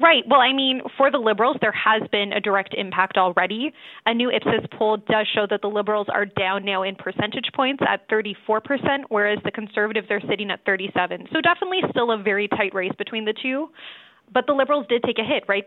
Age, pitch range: 20-39, 200-245 Hz